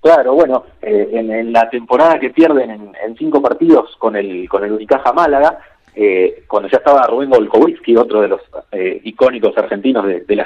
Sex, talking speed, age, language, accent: male, 195 wpm, 40-59, Spanish, Argentinian